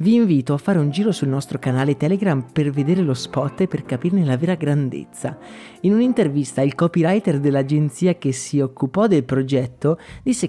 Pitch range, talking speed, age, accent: 145-205 Hz, 175 wpm, 30-49, native